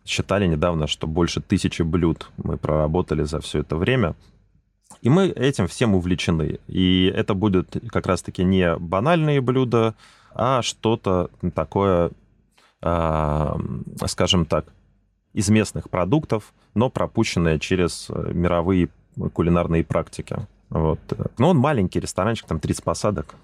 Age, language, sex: 30-49, Russian, male